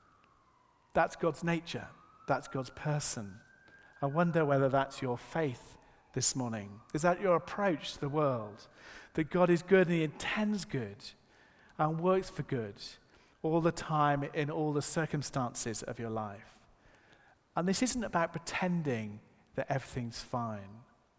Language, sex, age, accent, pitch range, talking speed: English, male, 40-59, British, 115-160 Hz, 145 wpm